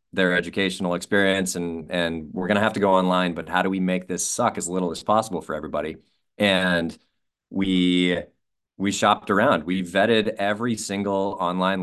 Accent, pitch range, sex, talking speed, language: American, 90-100 Hz, male, 180 wpm, English